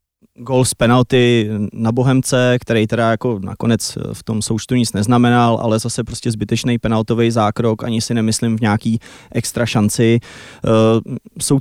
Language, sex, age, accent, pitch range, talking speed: Czech, male, 20-39, native, 110-125 Hz, 150 wpm